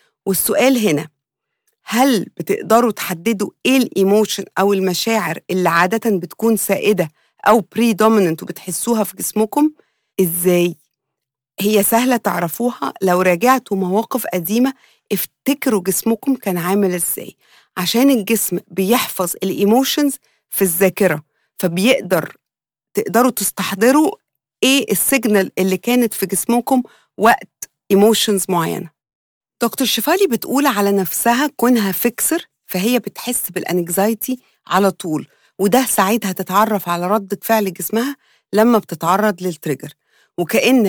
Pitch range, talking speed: 185-245 Hz, 105 wpm